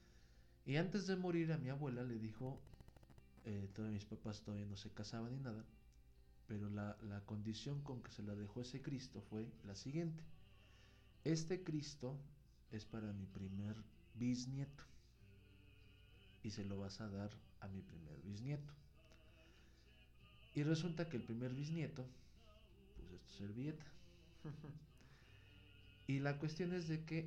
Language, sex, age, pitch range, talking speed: Spanish, male, 50-69, 100-130 Hz, 145 wpm